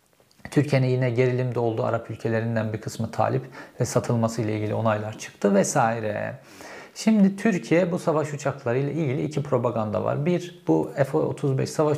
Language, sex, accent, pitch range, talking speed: Turkish, male, native, 125-155 Hz, 140 wpm